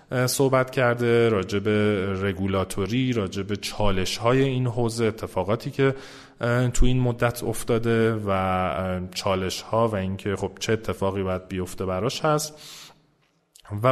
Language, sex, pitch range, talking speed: Persian, male, 95-115 Hz, 120 wpm